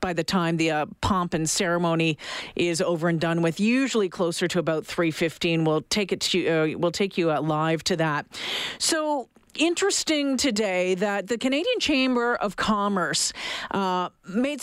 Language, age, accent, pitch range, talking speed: English, 40-59, American, 180-220 Hz, 170 wpm